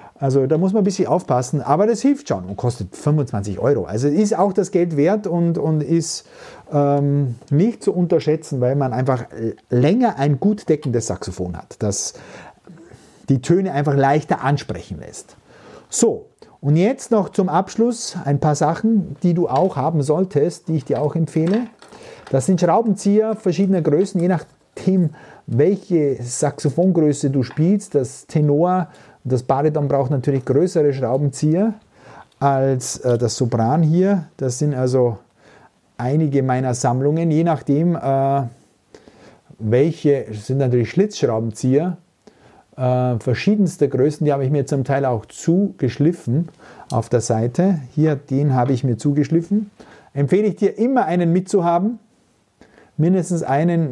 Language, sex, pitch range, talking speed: German, male, 130-180 Hz, 140 wpm